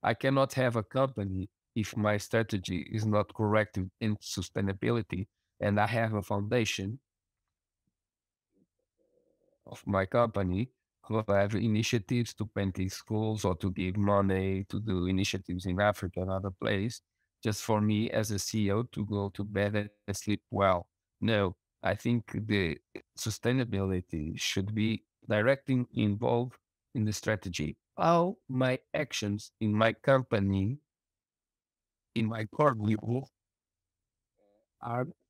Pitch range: 100-120 Hz